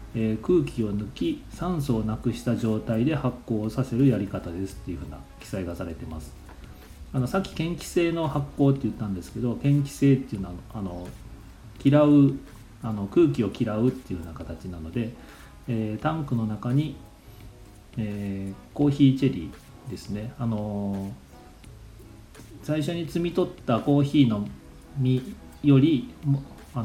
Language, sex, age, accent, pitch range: Japanese, male, 40-59, native, 100-140 Hz